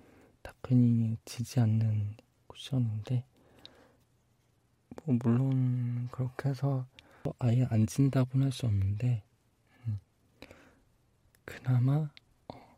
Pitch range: 115-130 Hz